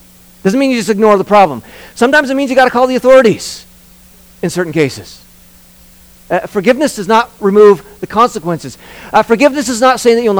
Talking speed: 190 wpm